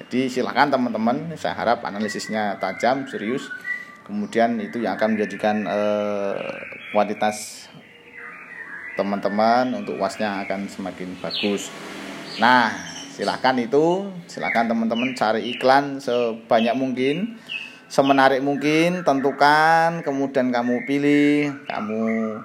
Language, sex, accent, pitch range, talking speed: Indonesian, male, native, 105-135 Hz, 100 wpm